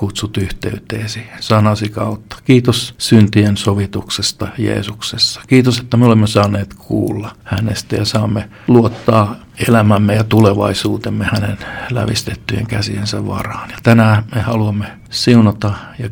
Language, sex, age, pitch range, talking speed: Finnish, male, 50-69, 105-115 Hz, 115 wpm